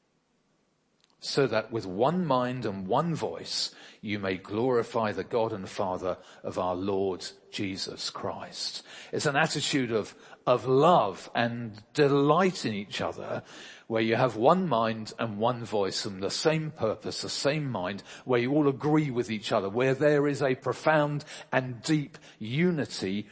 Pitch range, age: 115-155 Hz, 40-59